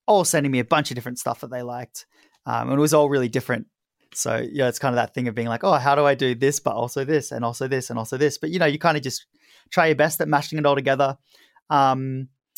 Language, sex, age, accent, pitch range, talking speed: English, male, 20-39, Australian, 120-150 Hz, 285 wpm